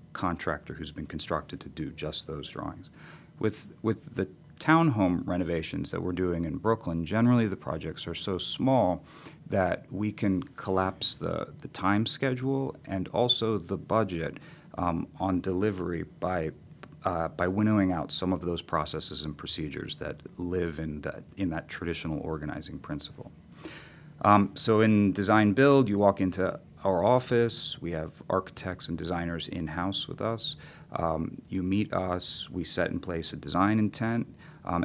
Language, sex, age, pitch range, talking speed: English, male, 40-59, 85-110 Hz, 150 wpm